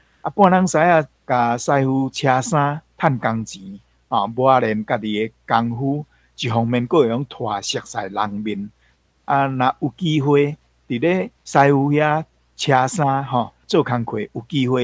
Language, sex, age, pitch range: Chinese, male, 60-79, 110-140 Hz